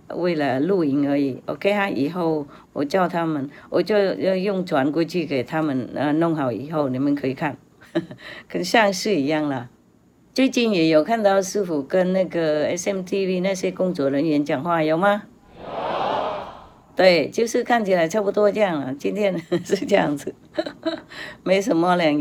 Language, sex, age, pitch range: English, female, 60-79, 150-200 Hz